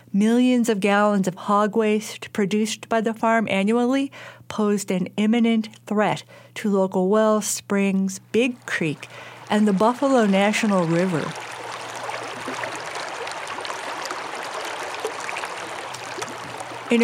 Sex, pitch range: female, 175-220 Hz